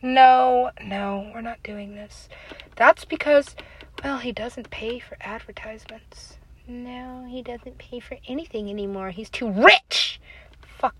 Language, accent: English, American